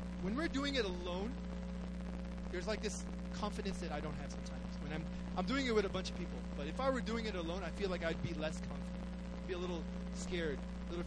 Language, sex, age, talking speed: English, male, 20-39, 245 wpm